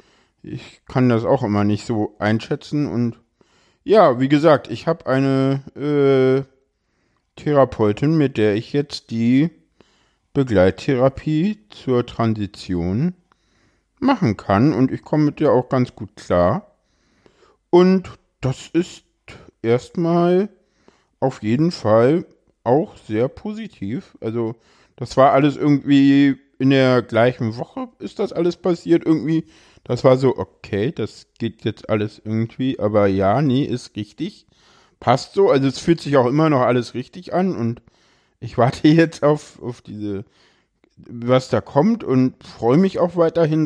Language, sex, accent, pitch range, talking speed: German, male, German, 105-150 Hz, 140 wpm